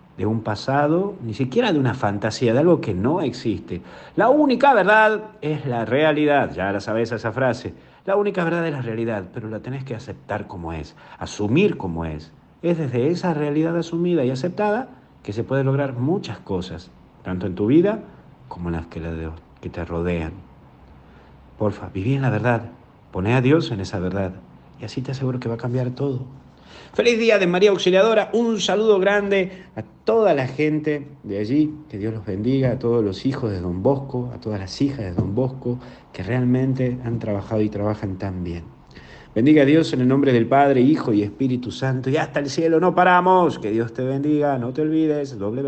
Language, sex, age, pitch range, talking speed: Spanish, male, 50-69, 105-150 Hz, 195 wpm